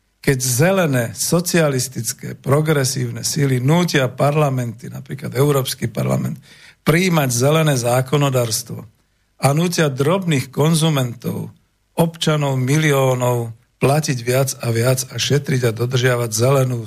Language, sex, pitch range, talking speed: Slovak, male, 120-150 Hz, 100 wpm